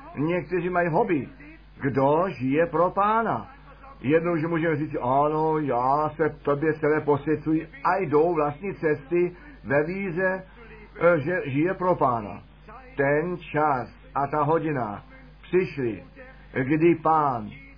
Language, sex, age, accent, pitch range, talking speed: Czech, male, 50-69, native, 150-175 Hz, 120 wpm